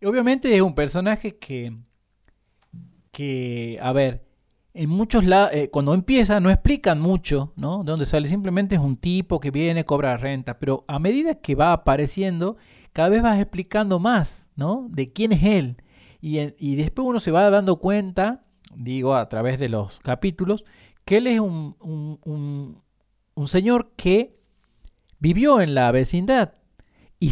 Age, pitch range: 40-59, 125-190 Hz